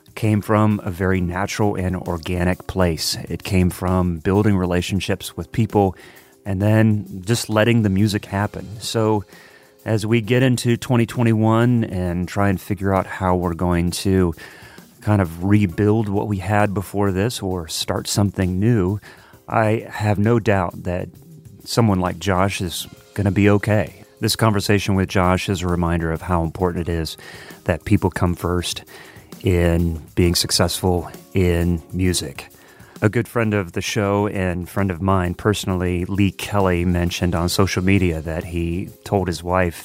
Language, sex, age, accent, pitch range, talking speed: English, male, 30-49, American, 90-105 Hz, 160 wpm